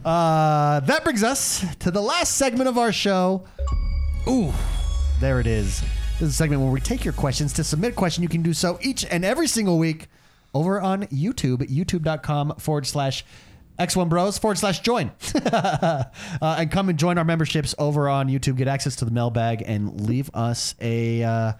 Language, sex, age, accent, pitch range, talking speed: English, male, 30-49, American, 135-185 Hz, 185 wpm